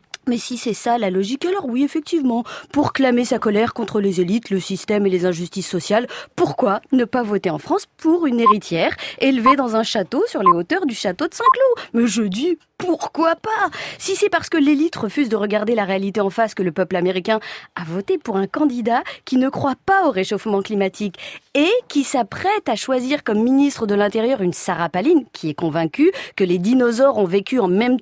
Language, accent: French, French